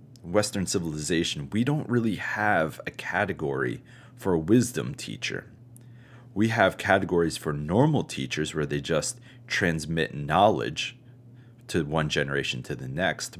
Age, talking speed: 30-49, 130 wpm